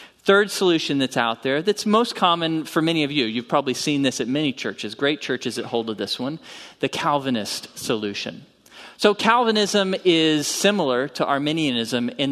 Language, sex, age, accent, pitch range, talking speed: English, male, 40-59, American, 125-175 Hz, 175 wpm